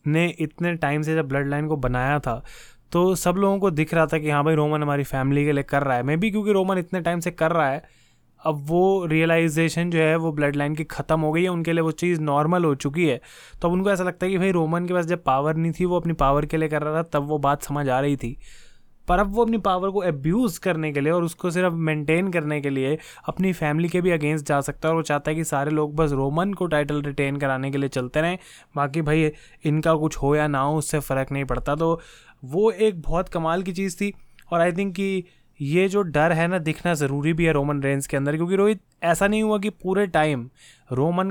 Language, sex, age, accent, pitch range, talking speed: Hindi, male, 20-39, native, 150-180 Hz, 255 wpm